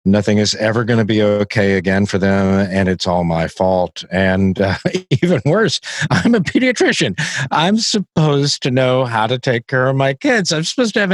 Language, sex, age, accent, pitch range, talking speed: English, male, 50-69, American, 100-135 Hz, 200 wpm